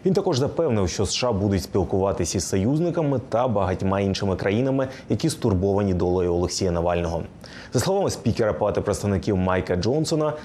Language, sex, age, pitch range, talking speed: Ukrainian, male, 20-39, 95-130 Hz, 145 wpm